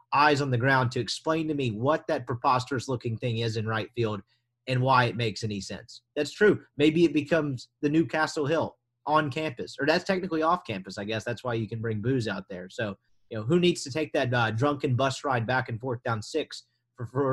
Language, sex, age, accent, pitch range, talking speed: English, male, 30-49, American, 120-165 Hz, 230 wpm